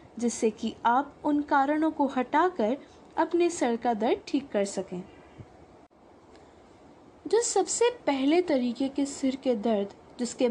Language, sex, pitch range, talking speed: English, female, 235-340 Hz, 130 wpm